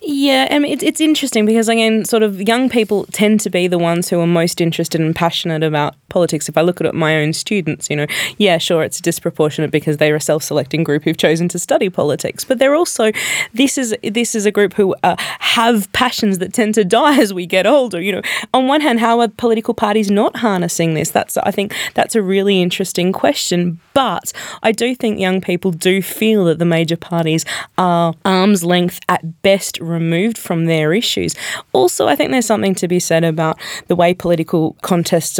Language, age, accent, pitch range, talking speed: English, 20-39, Australian, 165-215 Hz, 215 wpm